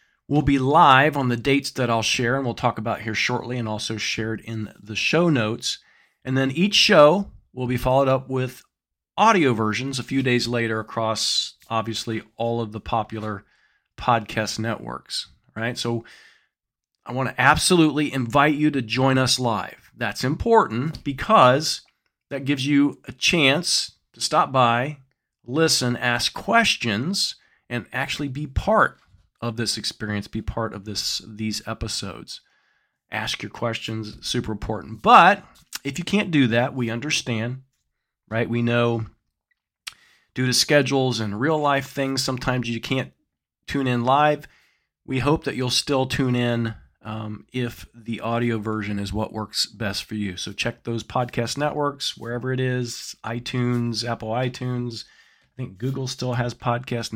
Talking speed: 155 wpm